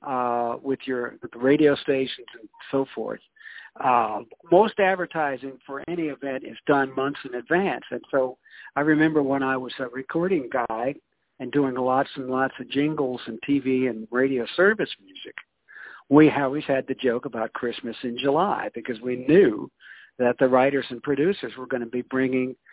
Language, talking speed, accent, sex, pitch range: English, 175 wpm, American, male, 130-160 Hz